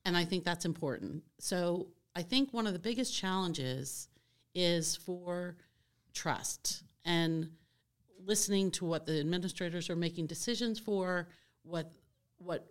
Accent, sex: American, female